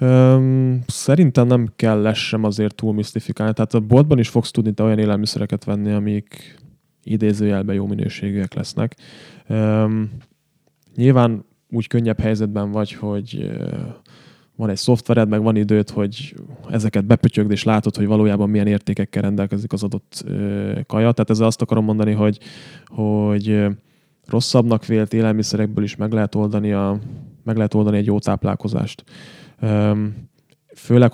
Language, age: Hungarian, 20-39